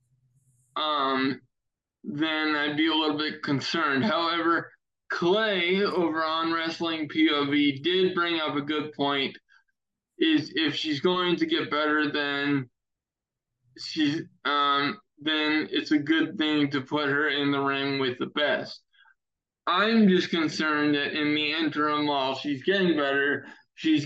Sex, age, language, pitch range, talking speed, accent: male, 20-39, English, 140-170 Hz, 140 wpm, American